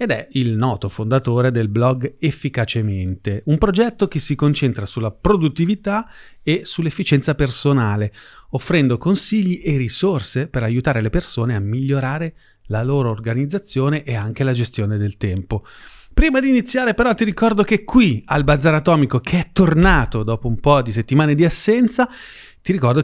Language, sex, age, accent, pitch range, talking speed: Italian, male, 30-49, native, 115-165 Hz, 155 wpm